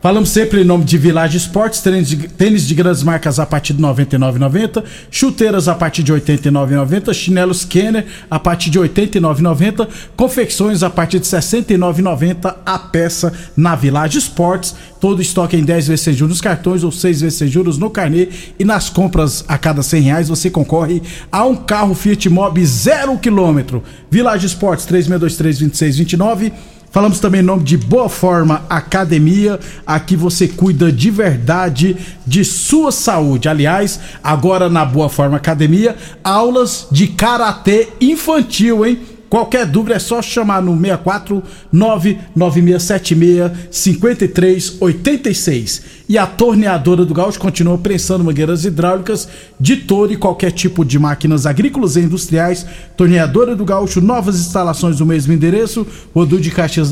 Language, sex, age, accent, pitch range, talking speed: Portuguese, male, 50-69, Brazilian, 165-205 Hz, 145 wpm